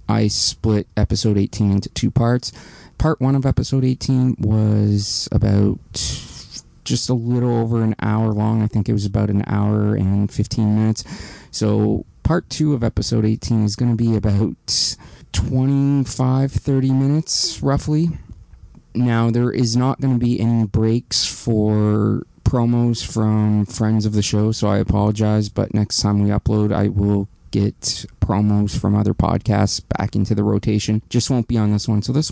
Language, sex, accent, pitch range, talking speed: English, male, American, 105-115 Hz, 165 wpm